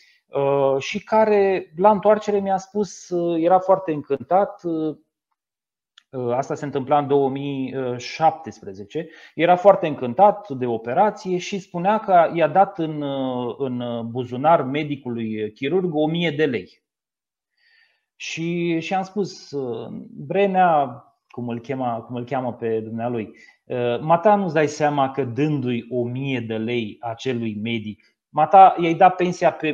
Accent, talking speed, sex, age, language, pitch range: native, 125 wpm, male, 30-49, Romanian, 135-195 Hz